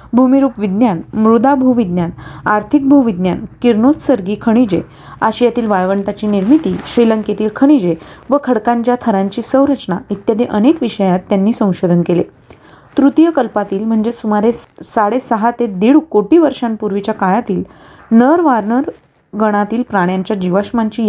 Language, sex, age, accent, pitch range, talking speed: Marathi, female, 30-49, native, 200-250 Hz, 110 wpm